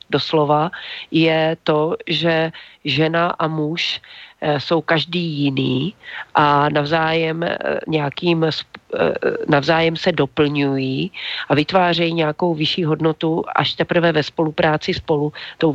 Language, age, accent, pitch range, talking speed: Czech, 40-59, native, 145-160 Hz, 105 wpm